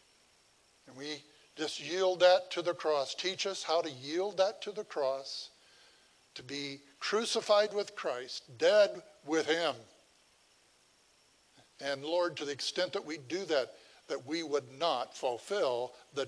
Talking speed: 150 wpm